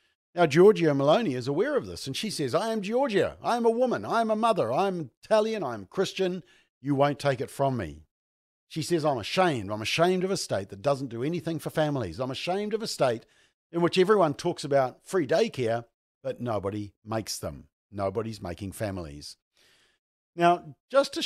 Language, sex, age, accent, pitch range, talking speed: English, male, 50-69, Australian, 115-160 Hz, 190 wpm